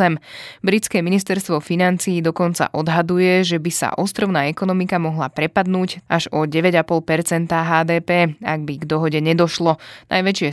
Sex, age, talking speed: female, 20-39, 125 wpm